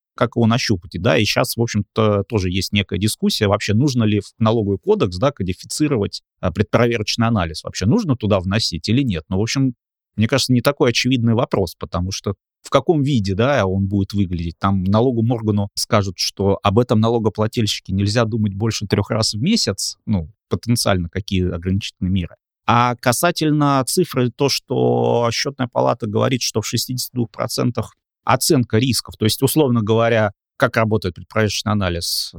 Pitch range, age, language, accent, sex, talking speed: 100-125 Hz, 30-49, Russian, native, male, 165 wpm